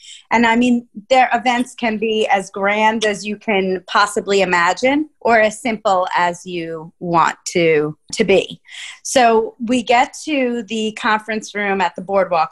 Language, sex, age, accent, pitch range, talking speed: English, female, 30-49, American, 185-230 Hz, 160 wpm